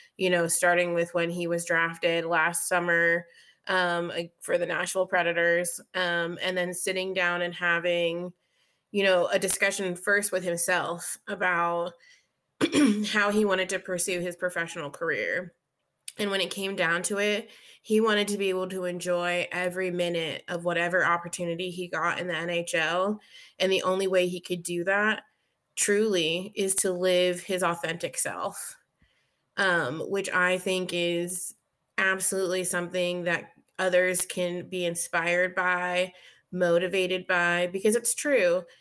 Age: 20-39